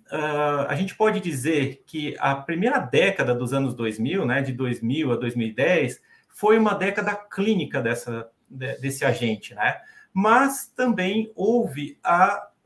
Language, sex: Portuguese, male